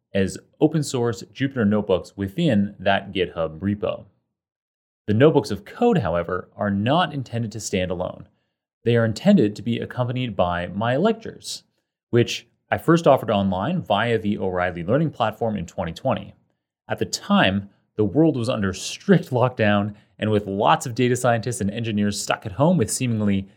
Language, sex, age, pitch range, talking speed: English, male, 30-49, 100-130 Hz, 160 wpm